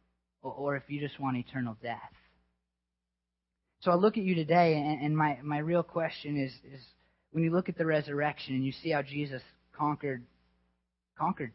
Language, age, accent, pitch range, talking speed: English, 30-49, American, 130-160 Hz, 170 wpm